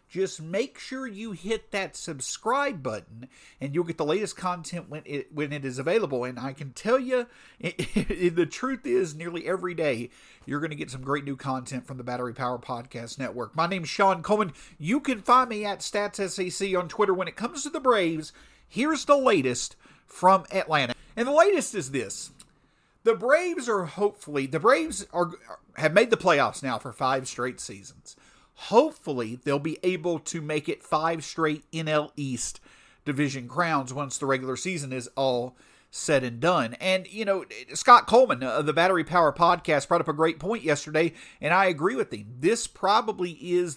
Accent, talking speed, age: American, 190 wpm, 50-69